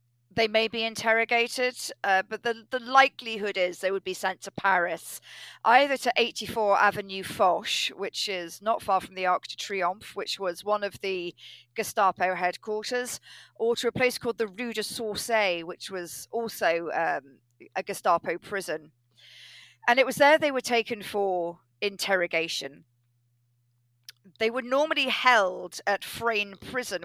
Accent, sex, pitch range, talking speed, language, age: British, female, 175-220 Hz, 155 wpm, English, 40-59